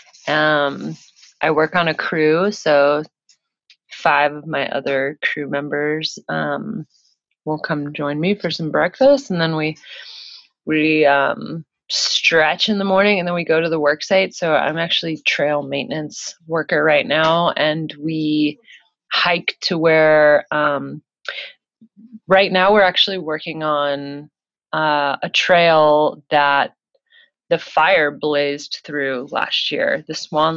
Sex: female